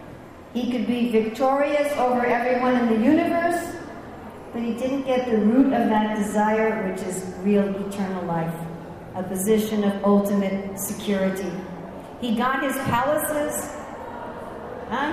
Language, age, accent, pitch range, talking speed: English, 50-69, American, 210-265 Hz, 130 wpm